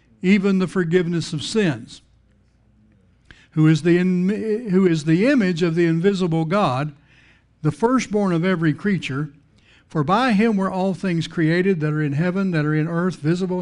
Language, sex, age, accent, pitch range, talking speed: English, male, 60-79, American, 135-180 Hz, 170 wpm